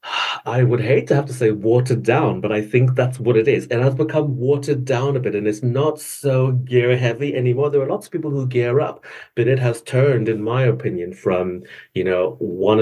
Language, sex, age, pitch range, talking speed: English, male, 40-59, 115-135 Hz, 230 wpm